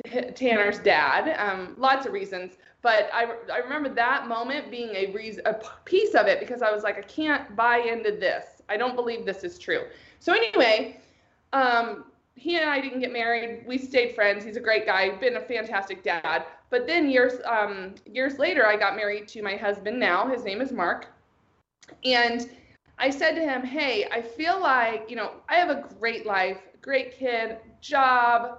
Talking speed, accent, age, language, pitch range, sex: 190 wpm, American, 20-39, English, 220-295 Hz, female